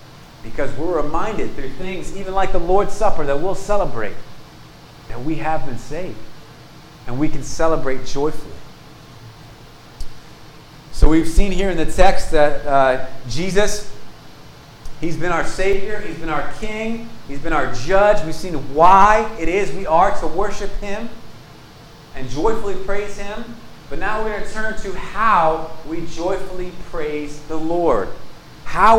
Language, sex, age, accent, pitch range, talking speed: English, male, 40-59, American, 150-210 Hz, 150 wpm